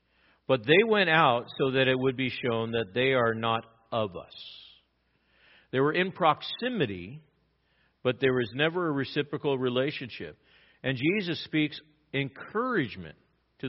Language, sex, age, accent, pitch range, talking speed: English, male, 50-69, American, 105-145 Hz, 140 wpm